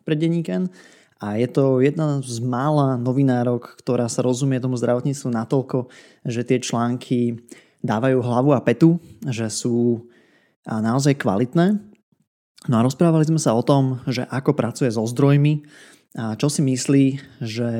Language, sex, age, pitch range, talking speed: Slovak, male, 20-39, 120-145 Hz, 150 wpm